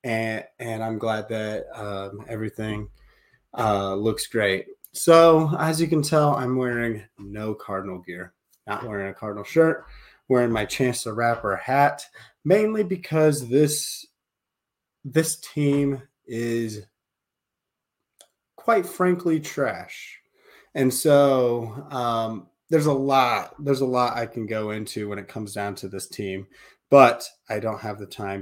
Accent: American